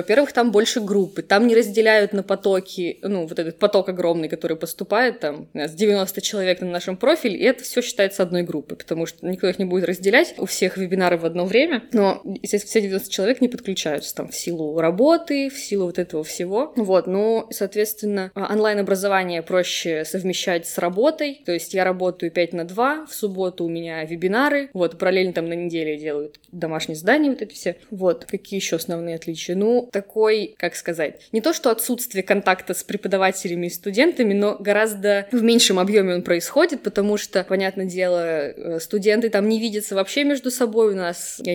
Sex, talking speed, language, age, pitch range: female, 185 wpm, Russian, 20-39, 175-215 Hz